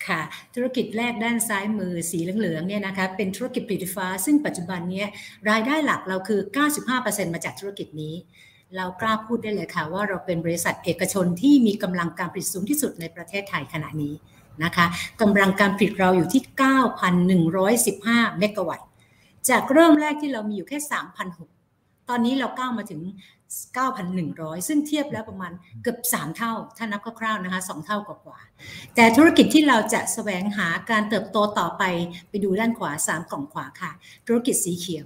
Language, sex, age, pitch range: Thai, female, 60-79, 180-230 Hz